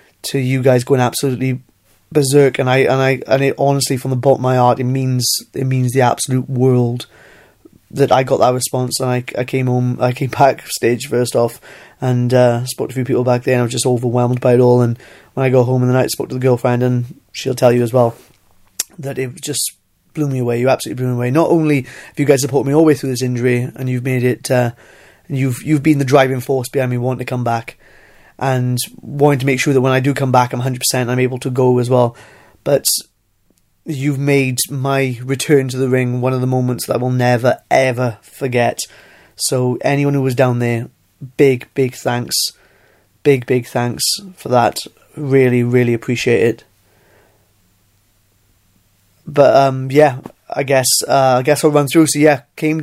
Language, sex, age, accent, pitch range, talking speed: English, male, 20-39, British, 125-135 Hz, 215 wpm